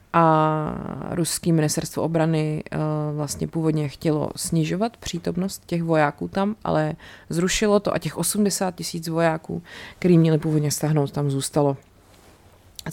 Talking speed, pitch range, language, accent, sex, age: 125 wpm, 150-175 Hz, Czech, native, female, 30-49